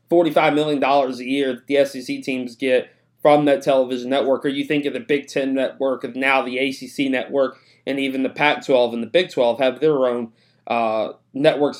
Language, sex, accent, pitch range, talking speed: English, male, American, 135-155 Hz, 205 wpm